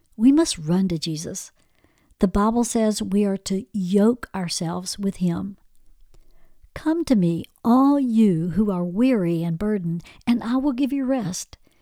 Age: 60-79